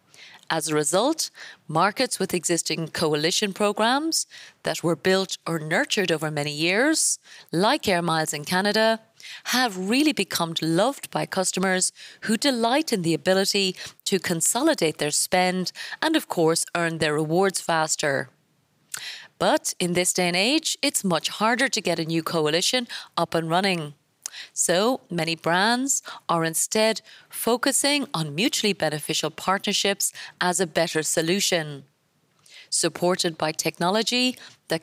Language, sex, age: English, female, 30-49